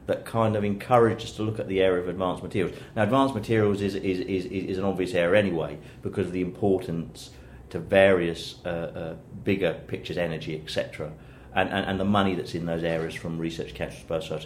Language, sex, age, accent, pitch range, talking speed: English, male, 40-59, British, 90-105 Hz, 210 wpm